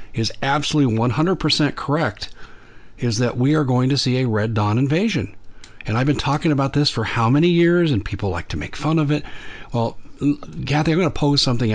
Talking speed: 205 wpm